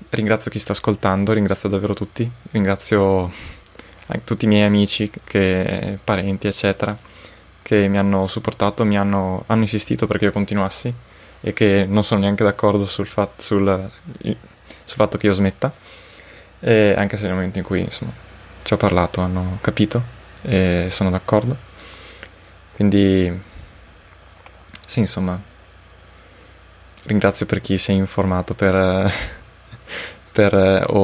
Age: 20-39